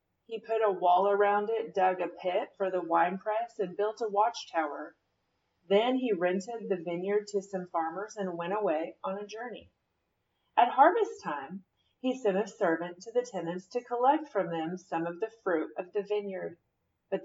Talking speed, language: 185 wpm, English